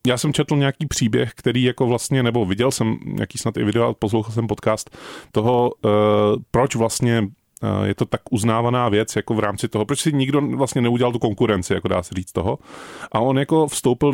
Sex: male